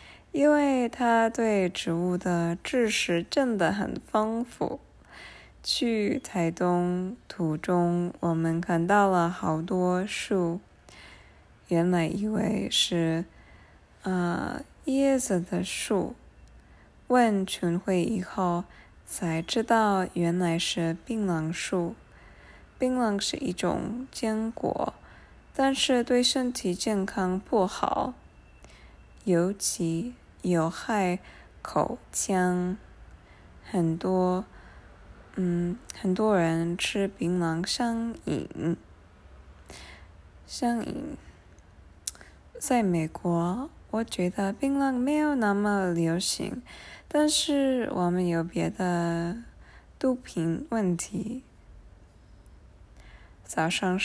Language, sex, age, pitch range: English, female, 20-39, 170-225 Hz